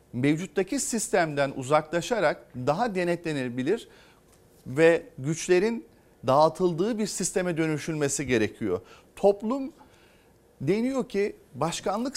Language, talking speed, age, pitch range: Turkish, 80 wpm, 40-59, 140-205 Hz